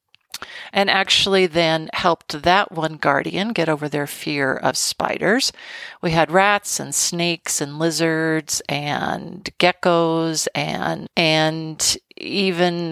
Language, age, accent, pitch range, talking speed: English, 40-59, American, 155-200 Hz, 115 wpm